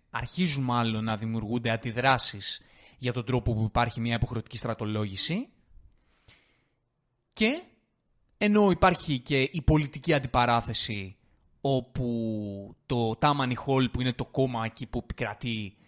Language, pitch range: Greek, 110-135 Hz